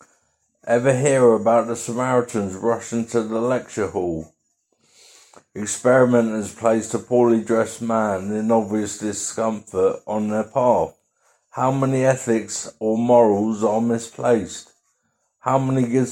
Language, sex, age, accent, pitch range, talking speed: English, male, 50-69, British, 105-125 Hz, 120 wpm